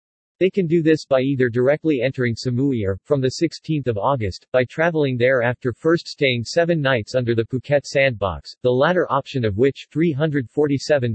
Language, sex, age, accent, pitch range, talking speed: English, male, 50-69, American, 120-150 Hz, 180 wpm